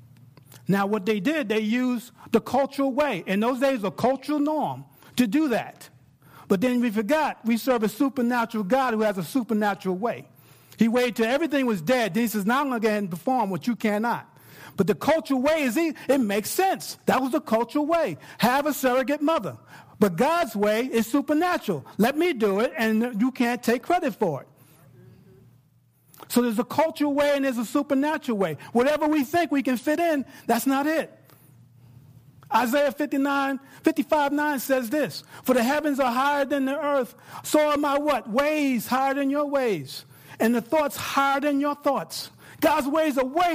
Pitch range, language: 220-290 Hz, English